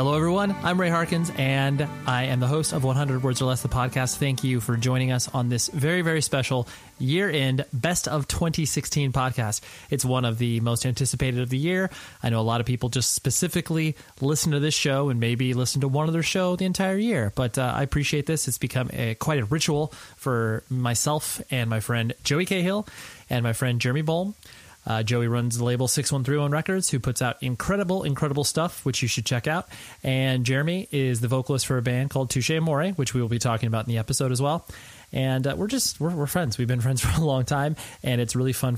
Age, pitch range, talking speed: 30-49, 125-150 Hz, 225 wpm